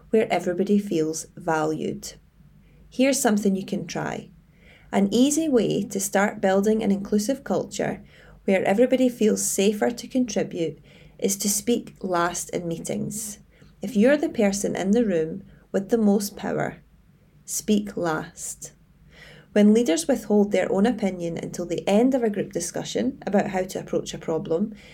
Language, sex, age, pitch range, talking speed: English, female, 30-49, 175-230 Hz, 150 wpm